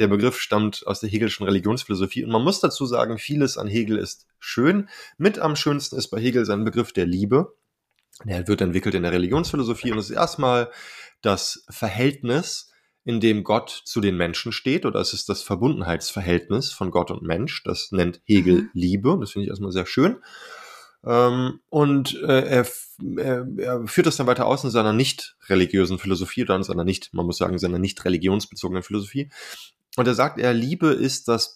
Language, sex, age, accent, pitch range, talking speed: German, male, 20-39, German, 100-135 Hz, 190 wpm